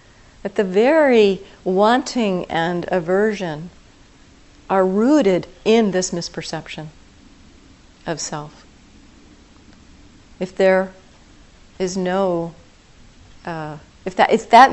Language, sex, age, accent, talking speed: English, female, 40-59, American, 90 wpm